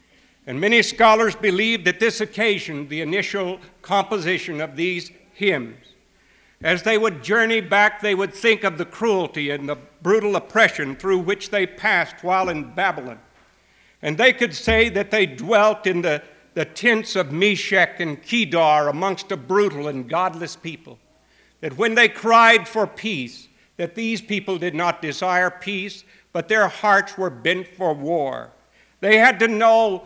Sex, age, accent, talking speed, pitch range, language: male, 60-79, American, 160 wpm, 170-210 Hz, English